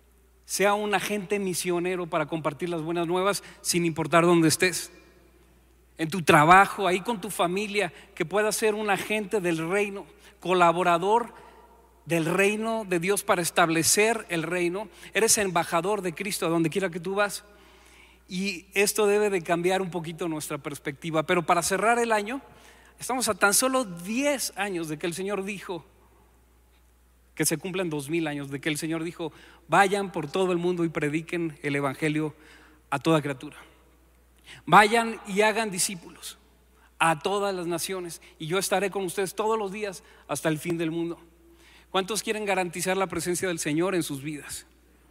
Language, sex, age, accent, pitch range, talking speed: Spanish, male, 40-59, Mexican, 160-200 Hz, 165 wpm